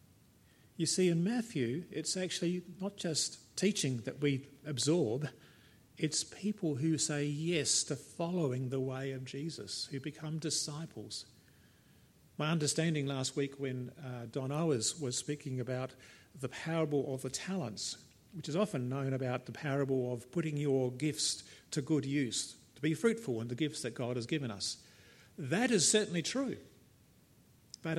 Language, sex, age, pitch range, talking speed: English, male, 50-69, 130-175 Hz, 155 wpm